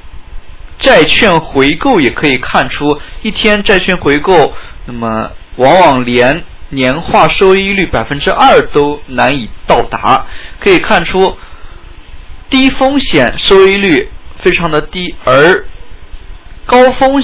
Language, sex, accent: Chinese, male, native